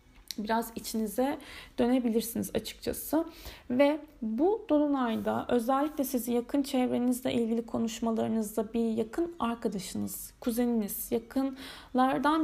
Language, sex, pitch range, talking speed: Turkish, female, 220-260 Hz, 85 wpm